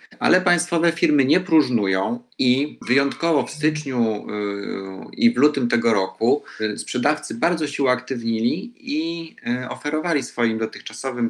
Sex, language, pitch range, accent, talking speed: male, Polish, 115-155 Hz, native, 115 wpm